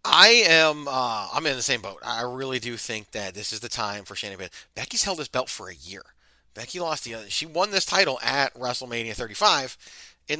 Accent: American